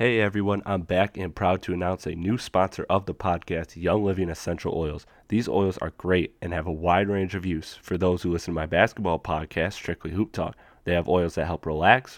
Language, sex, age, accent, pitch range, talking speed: English, male, 20-39, American, 85-100 Hz, 225 wpm